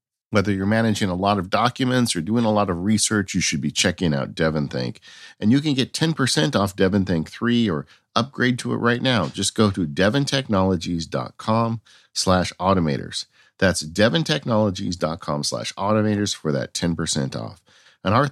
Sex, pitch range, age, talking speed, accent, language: male, 75-110 Hz, 50-69, 155 wpm, American, English